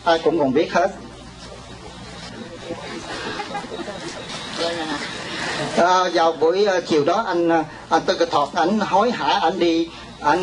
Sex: male